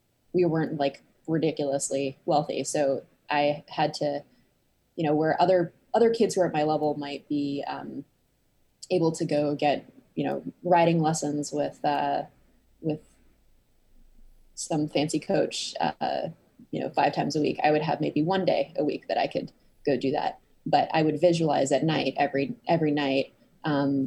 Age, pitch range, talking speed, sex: 20-39, 145-170 Hz, 170 wpm, female